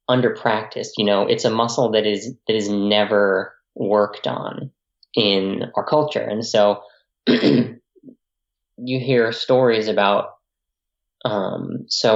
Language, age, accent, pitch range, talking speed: English, 10-29, American, 100-120 Hz, 120 wpm